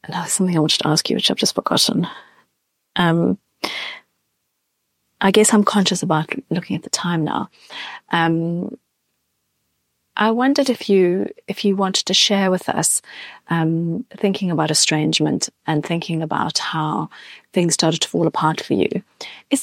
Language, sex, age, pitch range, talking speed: English, female, 30-49, 160-200 Hz, 155 wpm